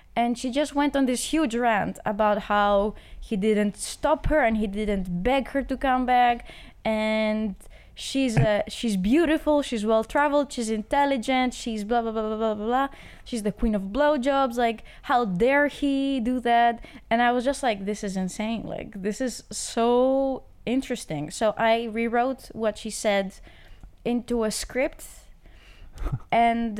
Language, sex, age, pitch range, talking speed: Dutch, female, 20-39, 210-250 Hz, 160 wpm